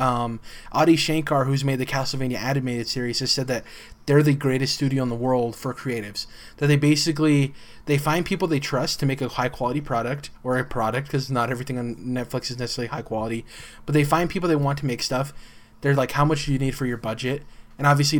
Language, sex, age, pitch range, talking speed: English, male, 20-39, 120-145 Hz, 220 wpm